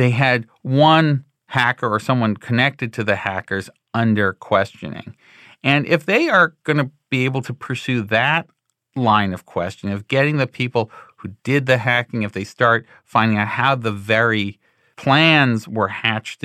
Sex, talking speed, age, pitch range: male, 165 wpm, 40-59, 110-145 Hz